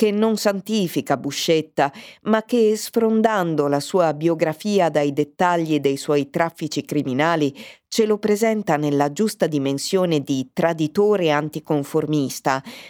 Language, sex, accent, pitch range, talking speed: Italian, female, native, 150-210 Hz, 115 wpm